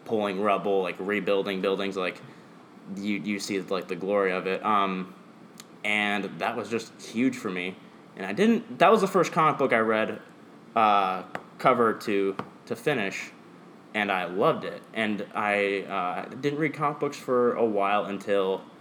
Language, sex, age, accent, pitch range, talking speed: English, male, 20-39, American, 100-120 Hz, 170 wpm